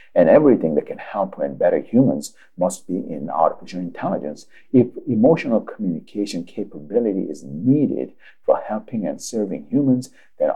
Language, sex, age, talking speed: English, male, 60-79, 140 wpm